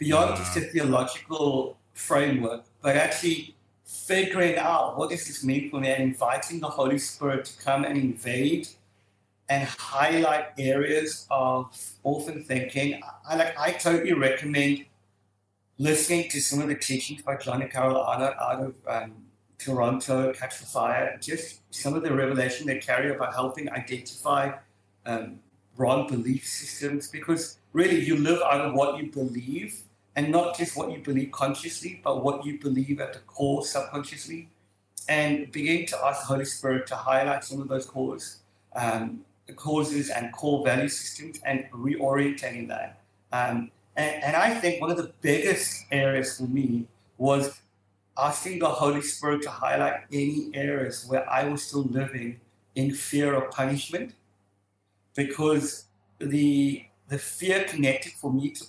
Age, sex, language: 50-69, male, English